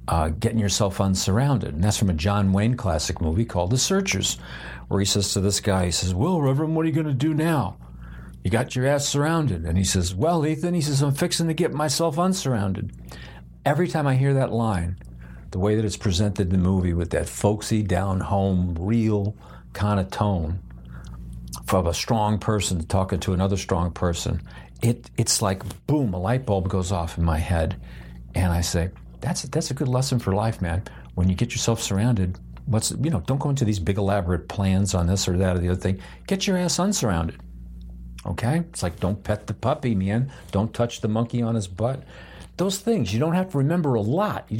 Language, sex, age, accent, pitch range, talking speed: English, male, 60-79, American, 90-130 Hz, 210 wpm